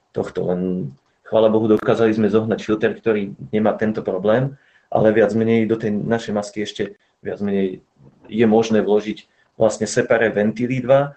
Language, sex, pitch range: Slovak, male, 105-115 Hz